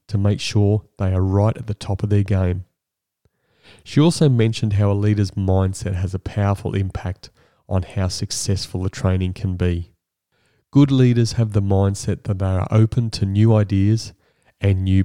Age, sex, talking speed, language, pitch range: 30-49, male, 175 wpm, English, 95-115 Hz